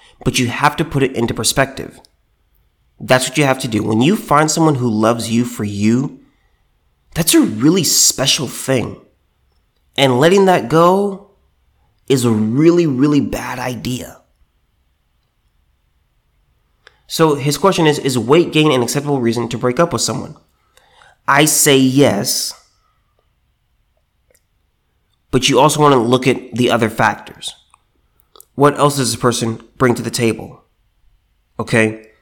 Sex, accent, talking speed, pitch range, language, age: male, American, 140 wpm, 115-145 Hz, English, 30-49